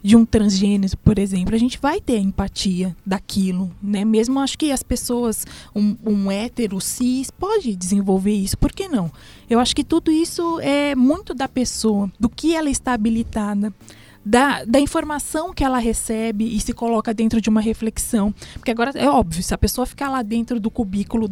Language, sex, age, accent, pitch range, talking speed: Portuguese, female, 20-39, Brazilian, 210-285 Hz, 190 wpm